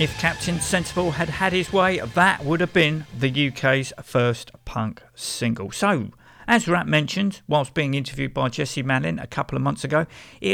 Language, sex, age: English, male, 50-69